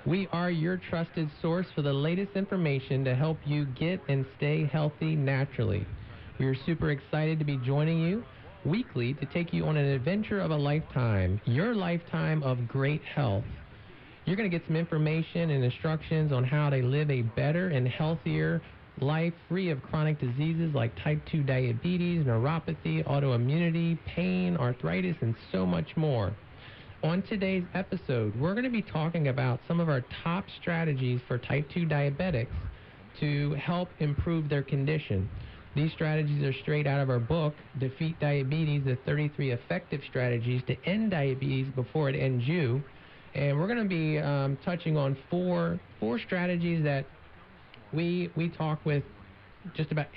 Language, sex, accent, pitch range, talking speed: English, male, American, 130-165 Hz, 160 wpm